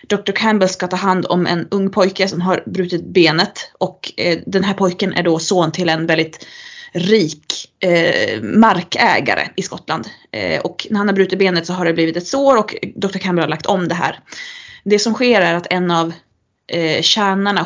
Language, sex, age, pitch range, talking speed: Swedish, female, 20-39, 170-210 Hz, 200 wpm